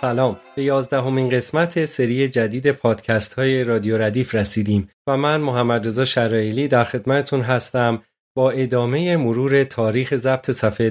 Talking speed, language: 135 wpm, Persian